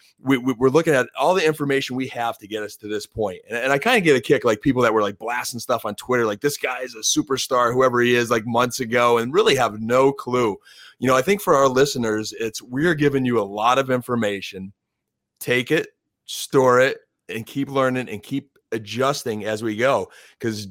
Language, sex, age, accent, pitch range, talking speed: English, male, 30-49, American, 115-135 Hz, 225 wpm